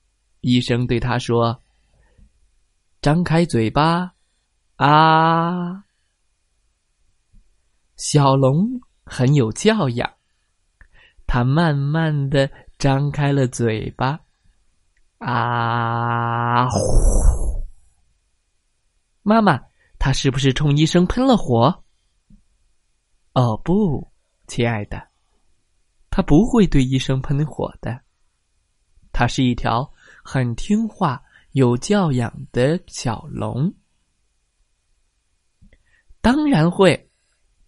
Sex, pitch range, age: male, 115-165 Hz, 20-39